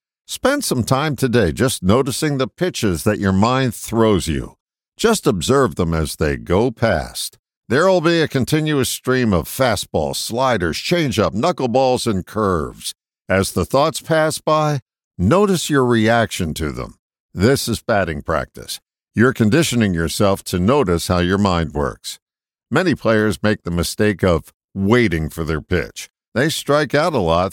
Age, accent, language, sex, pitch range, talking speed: 60-79, American, English, male, 90-130 Hz, 155 wpm